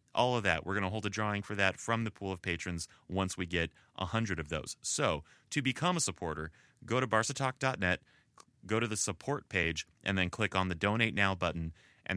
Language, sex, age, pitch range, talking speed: English, male, 30-49, 85-115 Hz, 220 wpm